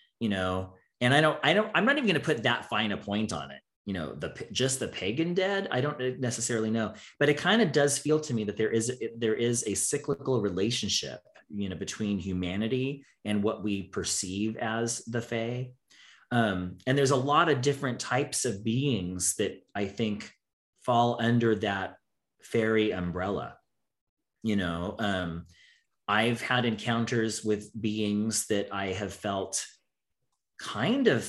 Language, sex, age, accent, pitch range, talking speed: English, male, 30-49, American, 100-125 Hz, 170 wpm